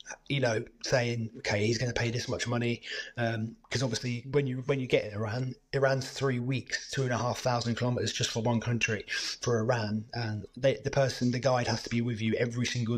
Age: 30-49